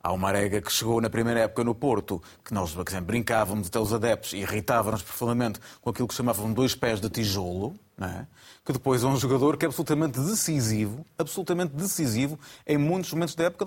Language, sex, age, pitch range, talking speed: Portuguese, male, 30-49, 110-150 Hz, 195 wpm